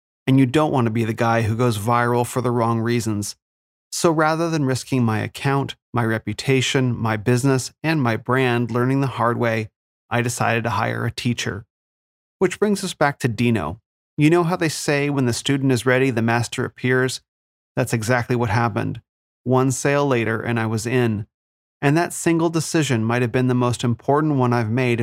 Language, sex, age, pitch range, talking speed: English, male, 30-49, 115-140 Hz, 195 wpm